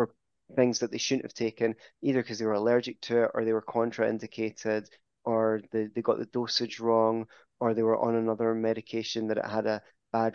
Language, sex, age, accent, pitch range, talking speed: English, male, 20-39, British, 110-125 Hz, 205 wpm